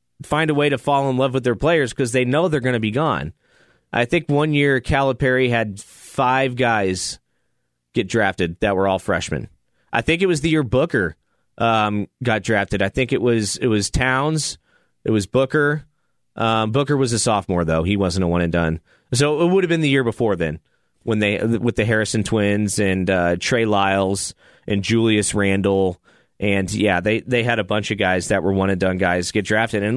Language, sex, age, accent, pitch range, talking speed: English, male, 30-49, American, 105-150 Hz, 210 wpm